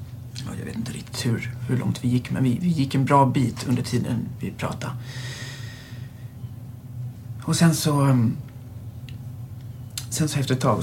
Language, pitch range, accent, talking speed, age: Swedish, 120-130 Hz, native, 135 wpm, 40-59